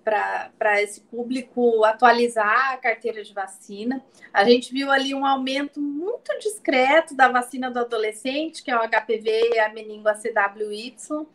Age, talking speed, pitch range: 30-49, 150 wpm, 240-290 Hz